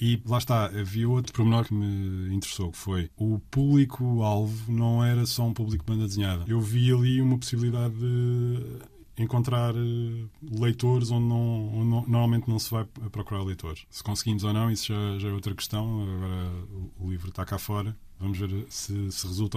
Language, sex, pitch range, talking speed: Portuguese, male, 95-115 Hz, 170 wpm